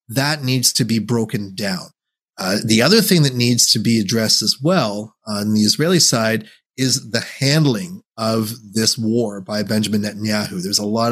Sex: male